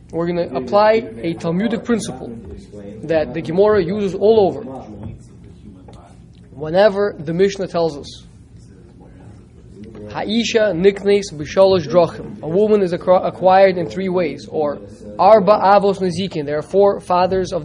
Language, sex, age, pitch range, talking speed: English, male, 20-39, 155-220 Hz, 125 wpm